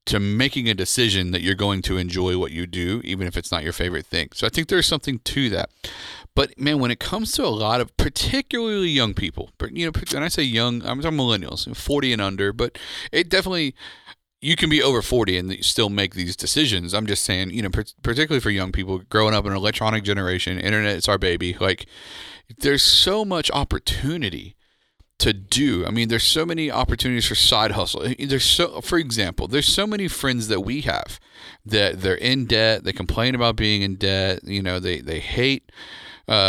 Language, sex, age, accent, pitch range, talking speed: English, male, 40-59, American, 95-130 Hz, 205 wpm